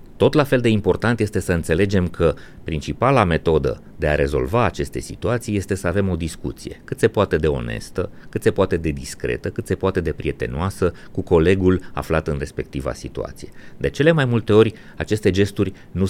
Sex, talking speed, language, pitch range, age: male, 185 wpm, Romanian, 80-110 Hz, 30-49